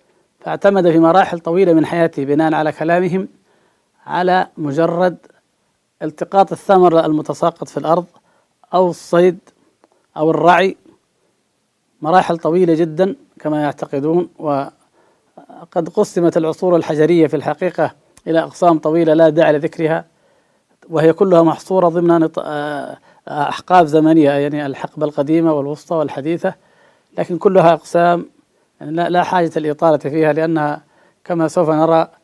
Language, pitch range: Arabic, 155-175 Hz